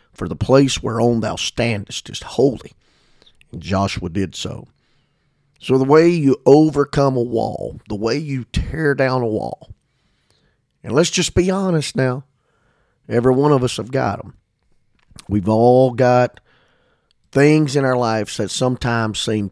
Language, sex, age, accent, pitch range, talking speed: English, male, 40-59, American, 105-130 Hz, 150 wpm